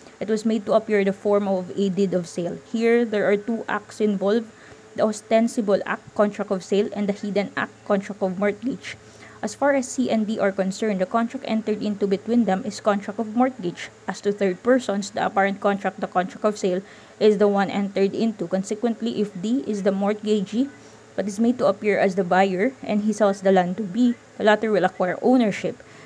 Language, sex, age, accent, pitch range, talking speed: English, female, 20-39, Filipino, 195-225 Hz, 210 wpm